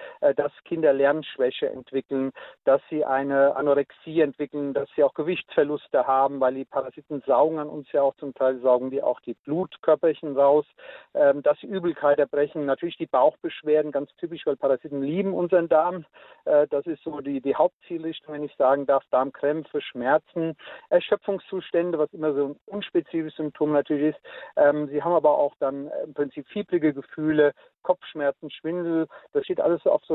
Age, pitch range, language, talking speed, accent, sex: 50-69, 140-170 Hz, German, 160 wpm, German, male